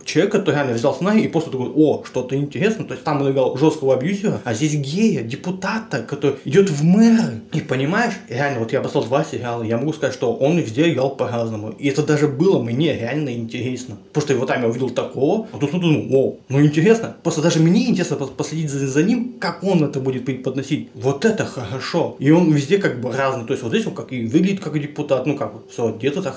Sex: male